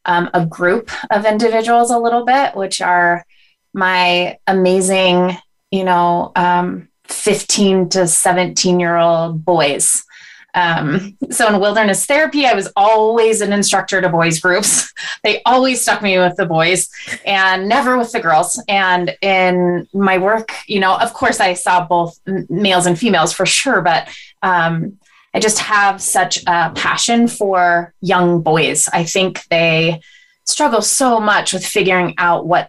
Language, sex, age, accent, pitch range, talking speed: English, female, 20-39, American, 175-205 Hz, 150 wpm